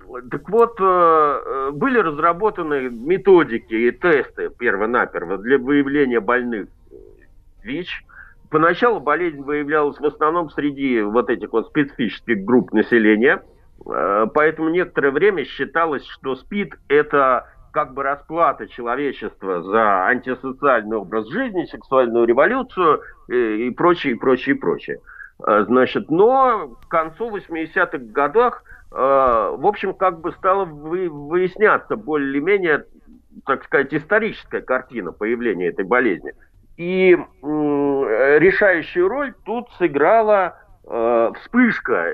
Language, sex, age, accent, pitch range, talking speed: Russian, male, 50-69, native, 140-235 Hz, 105 wpm